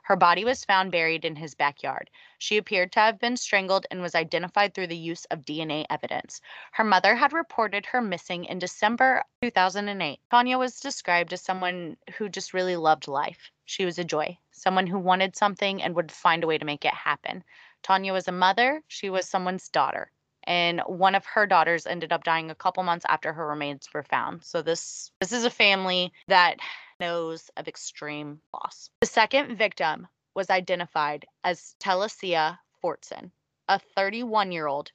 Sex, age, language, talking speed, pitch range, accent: female, 20-39, English, 180 wpm, 165-205 Hz, American